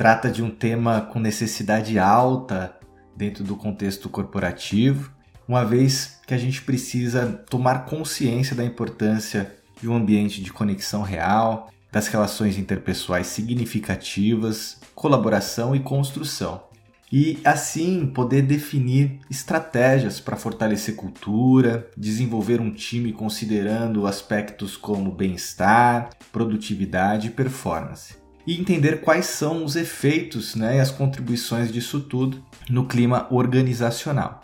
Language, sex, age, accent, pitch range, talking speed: Portuguese, male, 20-39, Brazilian, 110-135 Hz, 115 wpm